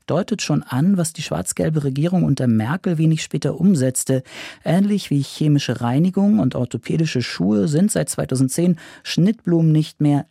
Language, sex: German, male